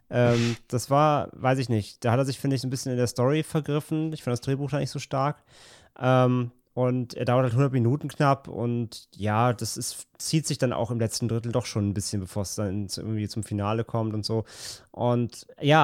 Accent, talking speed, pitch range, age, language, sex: German, 225 wpm, 115-140 Hz, 30-49, German, male